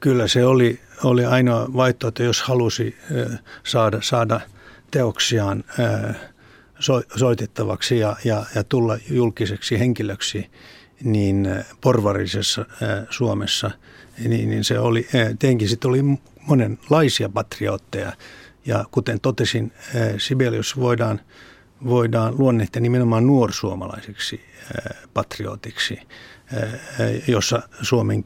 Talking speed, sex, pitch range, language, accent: 90 wpm, male, 105-125 Hz, Finnish, native